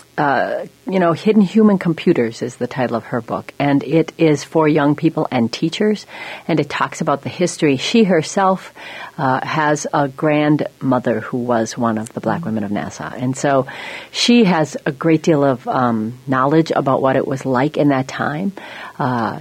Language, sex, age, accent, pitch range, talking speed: English, female, 40-59, American, 135-165 Hz, 185 wpm